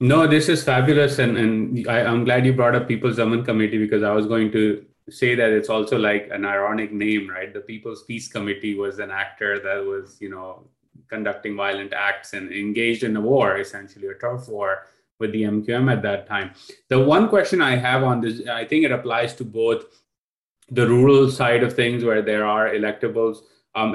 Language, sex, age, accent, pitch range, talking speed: English, male, 30-49, Indian, 110-130 Hz, 205 wpm